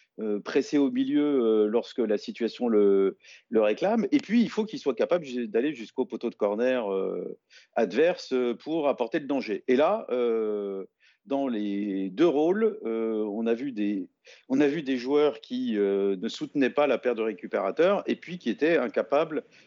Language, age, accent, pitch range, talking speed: French, 50-69, French, 110-150 Hz, 165 wpm